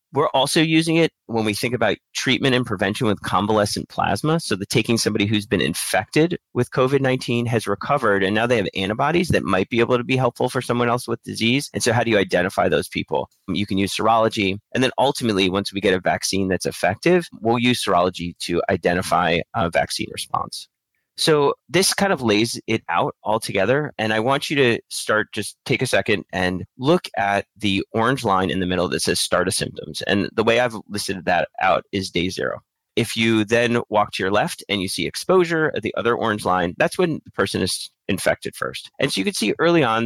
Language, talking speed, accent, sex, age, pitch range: English, 215 wpm, American, male, 30-49, 100-130 Hz